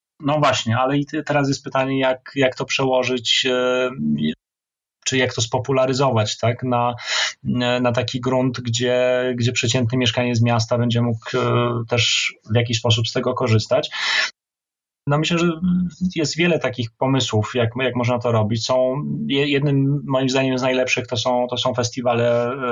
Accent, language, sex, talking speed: native, Polish, male, 155 wpm